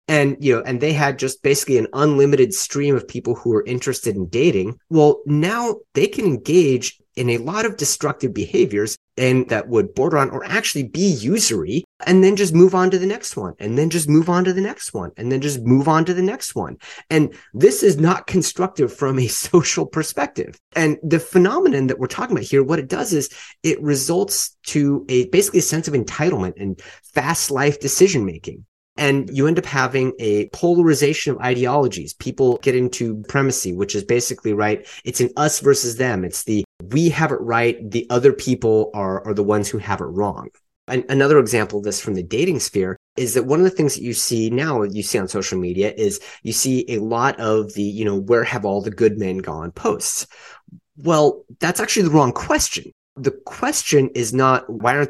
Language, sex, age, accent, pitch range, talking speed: English, male, 30-49, American, 115-160 Hz, 210 wpm